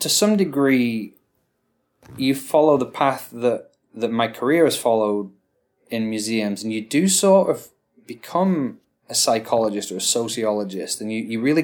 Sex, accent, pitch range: male, British, 105-120 Hz